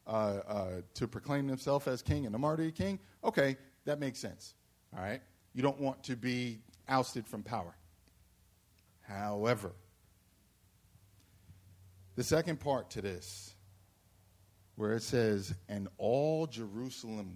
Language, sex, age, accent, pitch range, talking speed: English, male, 50-69, American, 95-135 Hz, 125 wpm